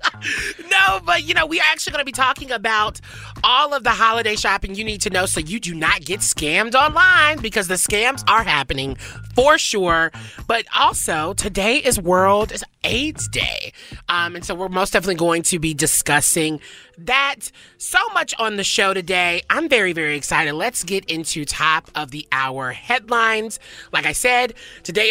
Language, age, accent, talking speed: English, 30-49, American, 175 wpm